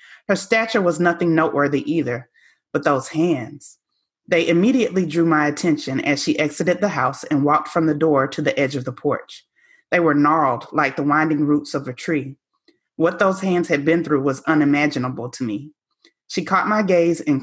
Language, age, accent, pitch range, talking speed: English, 30-49, American, 150-200 Hz, 190 wpm